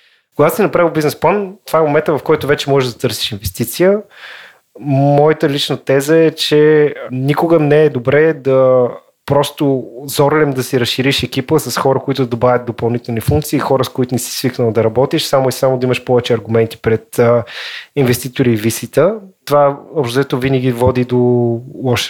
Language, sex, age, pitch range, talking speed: Bulgarian, male, 20-39, 125-150 Hz, 170 wpm